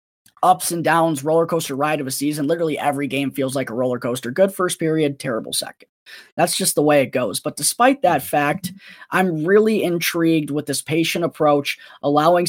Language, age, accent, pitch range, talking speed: English, 20-39, American, 145-175 Hz, 190 wpm